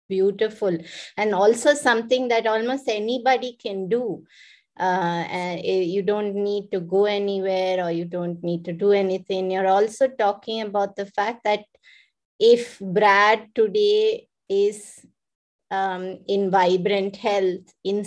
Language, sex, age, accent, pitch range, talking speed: English, female, 20-39, Indian, 185-225 Hz, 130 wpm